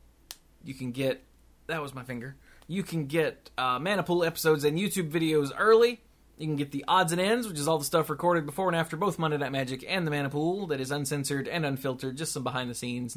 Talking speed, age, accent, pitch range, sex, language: 220 wpm, 20-39, American, 130-180 Hz, male, English